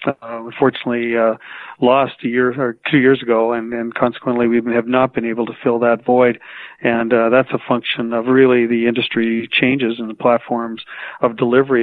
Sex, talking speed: male, 190 wpm